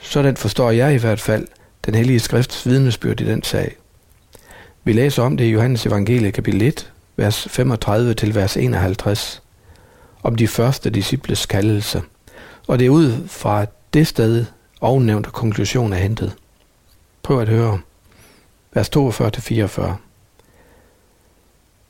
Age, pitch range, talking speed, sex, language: 60-79, 100-125 Hz, 125 wpm, male, Danish